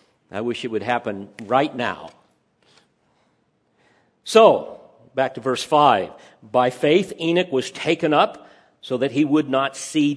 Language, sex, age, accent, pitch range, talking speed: English, male, 50-69, American, 130-165 Hz, 140 wpm